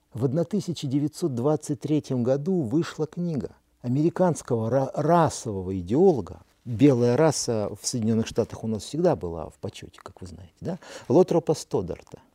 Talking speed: 115 wpm